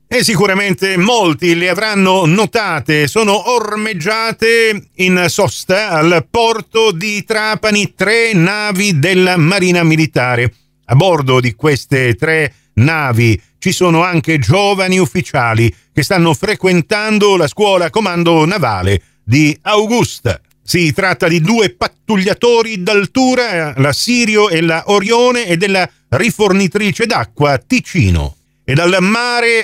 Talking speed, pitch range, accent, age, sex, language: 115 wpm, 150-210 Hz, native, 50-69, male, Italian